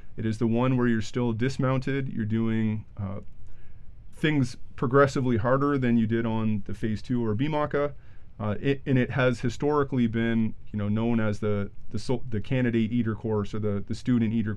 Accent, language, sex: American, English, male